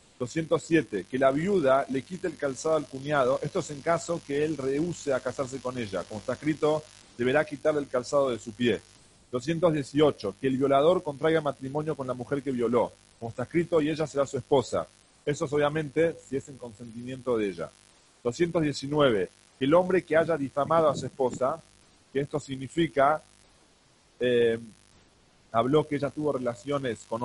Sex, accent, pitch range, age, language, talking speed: male, Argentinian, 125-155 Hz, 40-59, English, 175 wpm